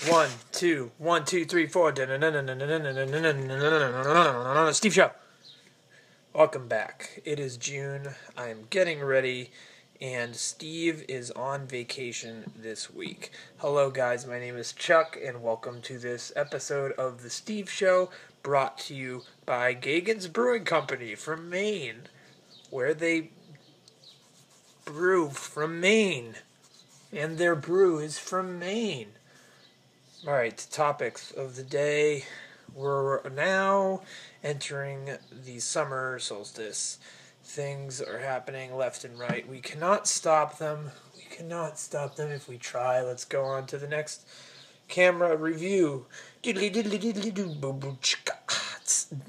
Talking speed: 115 wpm